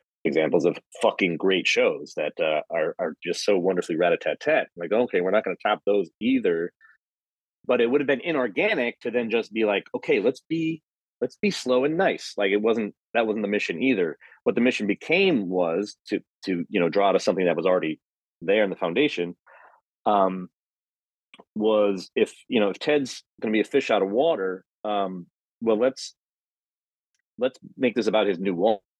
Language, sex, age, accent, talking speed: English, male, 30-49, American, 190 wpm